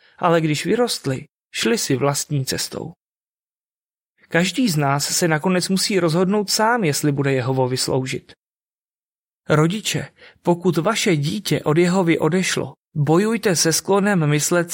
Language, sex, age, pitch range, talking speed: Czech, male, 30-49, 140-175 Hz, 120 wpm